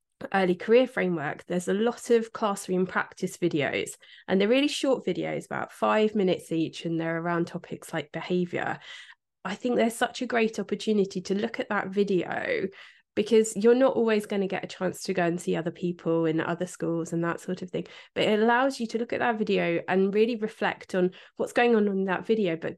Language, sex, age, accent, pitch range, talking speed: English, female, 20-39, British, 180-220 Hz, 210 wpm